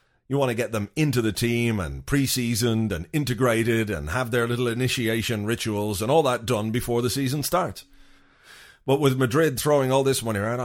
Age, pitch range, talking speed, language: 40-59, 120-160 Hz, 190 wpm, English